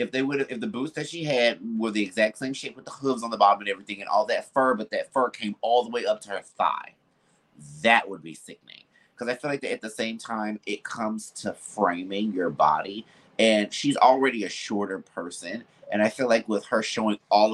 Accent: American